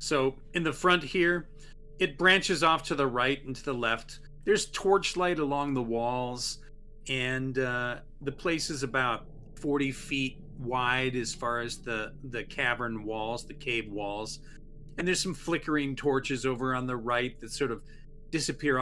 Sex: male